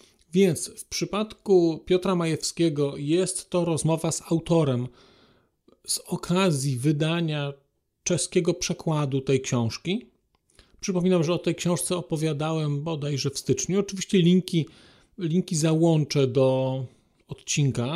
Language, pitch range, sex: Polish, 155-190 Hz, male